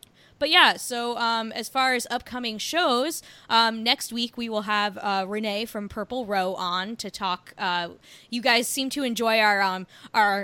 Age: 20-39